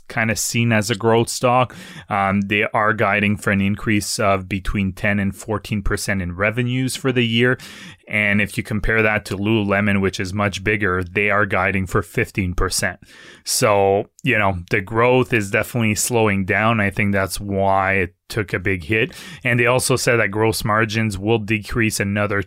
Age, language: 20-39, English